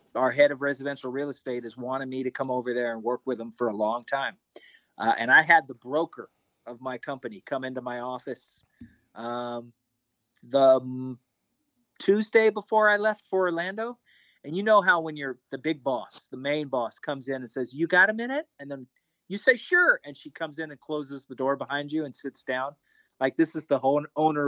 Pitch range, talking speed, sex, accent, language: 130-165 Hz, 215 wpm, male, American, English